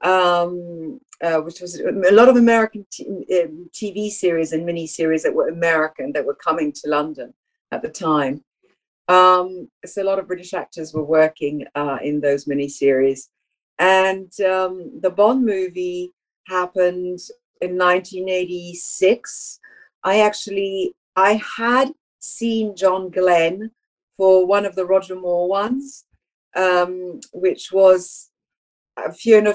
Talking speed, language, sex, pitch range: 135 wpm, English, female, 165-205 Hz